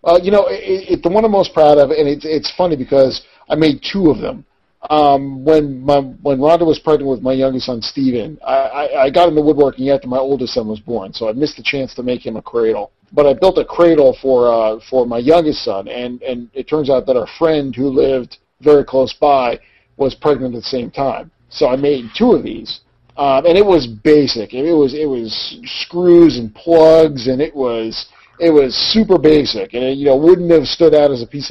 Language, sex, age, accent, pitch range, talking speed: English, male, 40-59, American, 130-160 Hz, 235 wpm